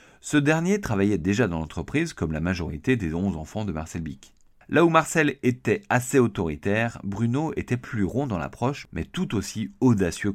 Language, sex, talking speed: French, male, 180 wpm